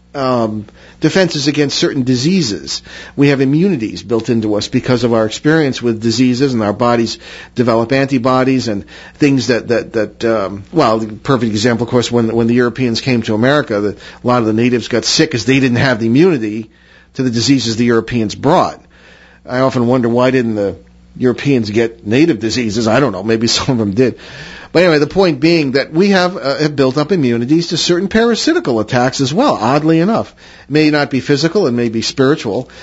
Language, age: English, 50-69